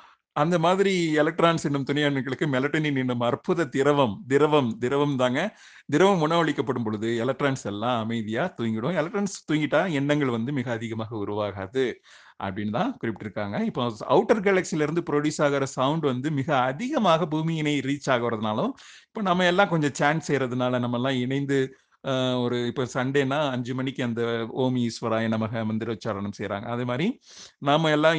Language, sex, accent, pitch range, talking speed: Tamil, male, native, 120-150 Hz, 140 wpm